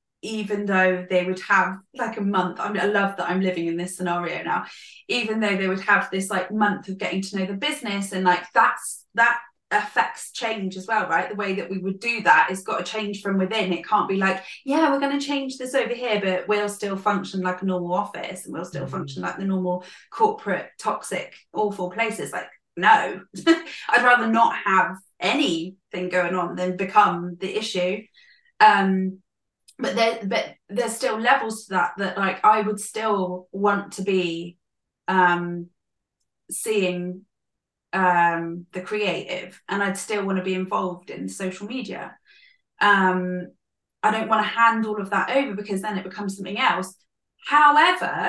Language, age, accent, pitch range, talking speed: English, 20-39, British, 185-220 Hz, 185 wpm